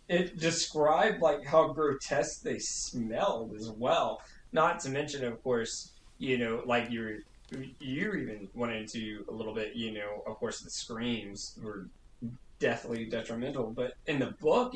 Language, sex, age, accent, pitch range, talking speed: English, male, 20-39, American, 120-170 Hz, 150 wpm